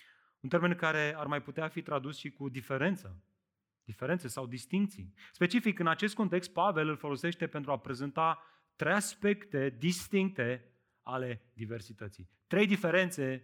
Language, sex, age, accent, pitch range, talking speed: Romanian, male, 30-49, native, 145-200 Hz, 140 wpm